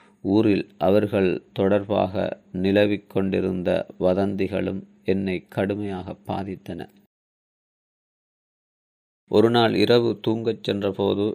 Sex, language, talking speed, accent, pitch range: male, Tamil, 75 wpm, native, 95-105 Hz